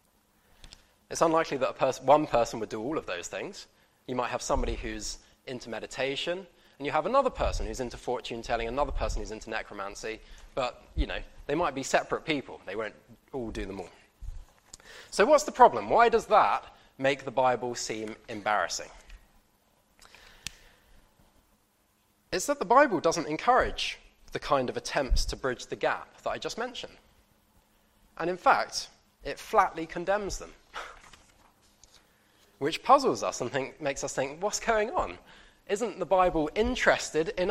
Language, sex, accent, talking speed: English, male, British, 160 wpm